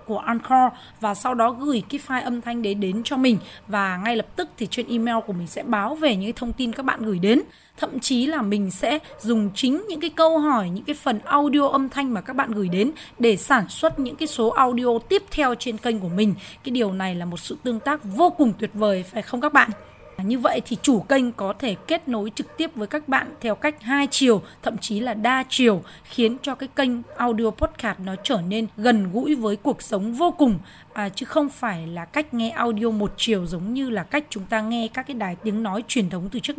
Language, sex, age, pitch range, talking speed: Vietnamese, female, 20-39, 215-275 Hz, 245 wpm